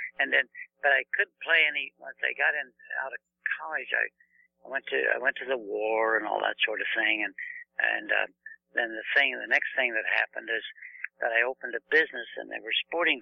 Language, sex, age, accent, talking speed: English, male, 60-79, American, 230 wpm